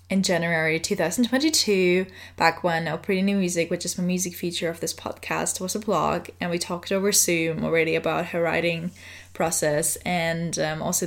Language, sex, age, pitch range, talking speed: English, female, 10-29, 165-195 Hz, 180 wpm